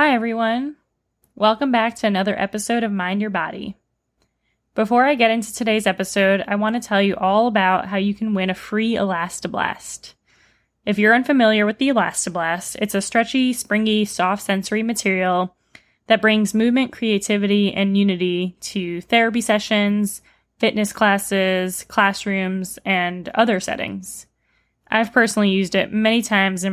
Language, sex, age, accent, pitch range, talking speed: English, female, 10-29, American, 190-220 Hz, 150 wpm